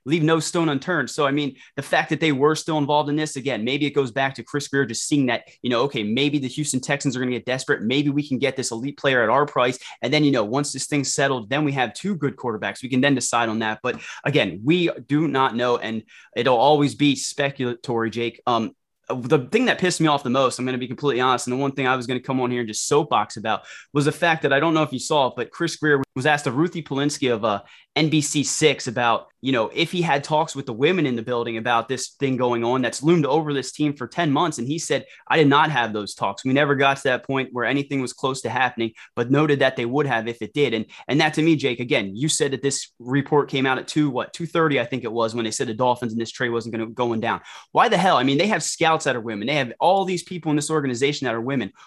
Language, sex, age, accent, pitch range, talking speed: English, male, 20-39, American, 125-150 Hz, 285 wpm